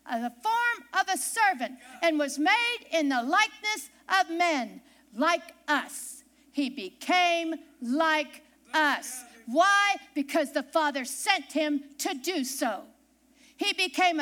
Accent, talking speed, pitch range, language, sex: American, 130 wpm, 275-355 Hz, English, female